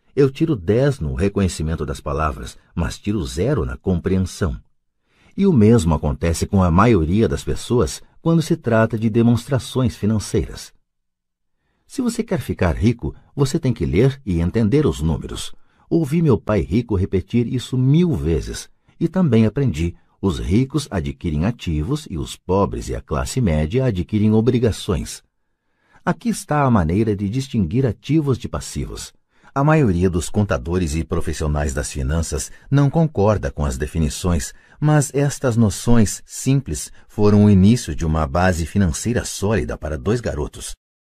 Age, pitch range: 60-79, 80-125 Hz